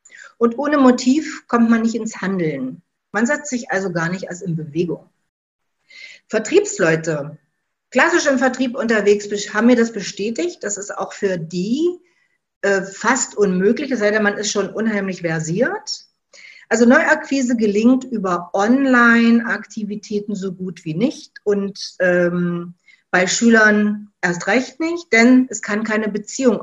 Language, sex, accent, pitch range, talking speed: German, female, German, 185-250 Hz, 140 wpm